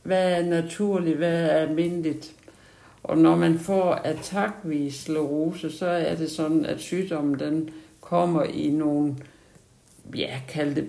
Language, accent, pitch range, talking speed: Danish, native, 150-170 Hz, 130 wpm